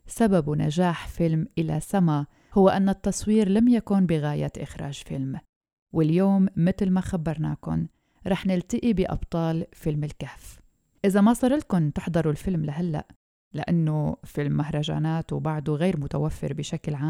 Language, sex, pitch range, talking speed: Arabic, female, 155-190 Hz, 125 wpm